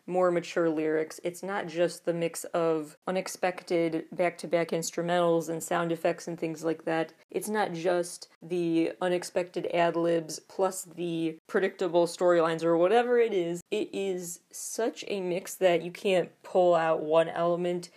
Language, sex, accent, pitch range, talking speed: English, female, American, 165-190 Hz, 150 wpm